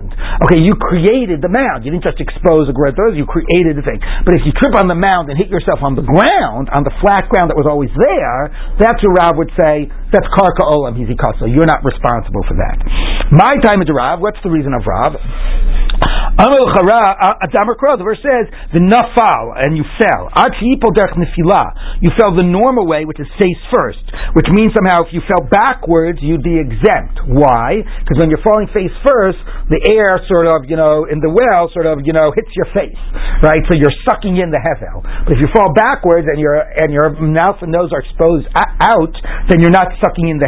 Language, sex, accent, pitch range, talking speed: English, male, American, 150-205 Hz, 200 wpm